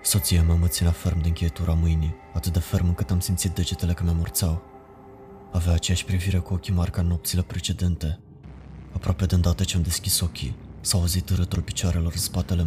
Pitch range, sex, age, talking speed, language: 90-100 Hz, male, 20-39, 185 wpm, Romanian